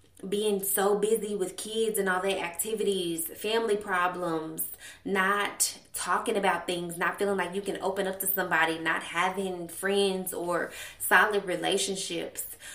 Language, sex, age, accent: English, female, 20-39, American